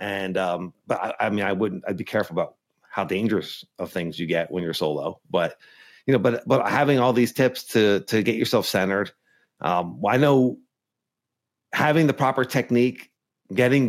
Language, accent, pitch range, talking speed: English, American, 95-125 Hz, 185 wpm